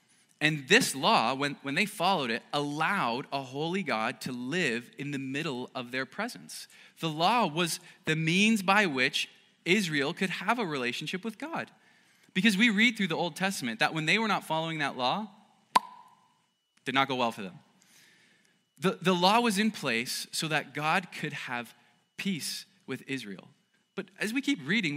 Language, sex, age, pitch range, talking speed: English, male, 20-39, 150-210 Hz, 180 wpm